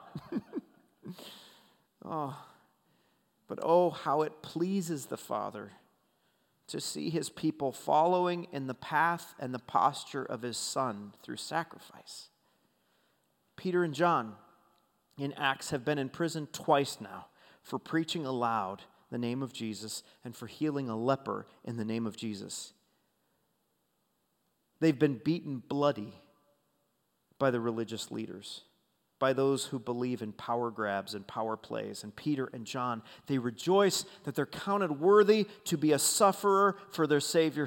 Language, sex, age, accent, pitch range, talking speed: English, male, 40-59, American, 120-165 Hz, 140 wpm